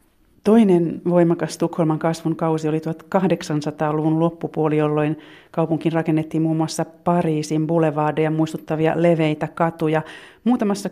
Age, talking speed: 30-49, 105 wpm